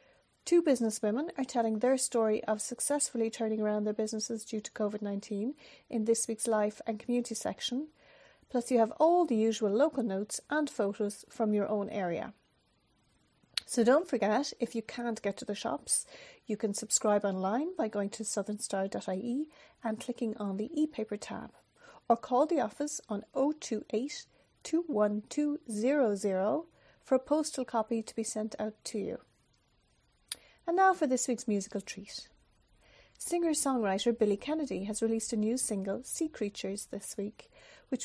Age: 40-59